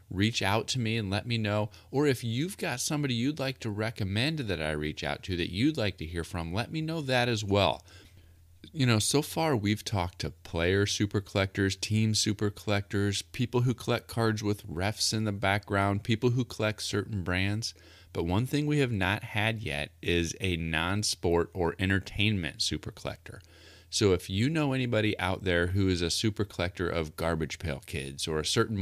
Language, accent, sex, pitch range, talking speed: English, American, male, 85-110 Hz, 200 wpm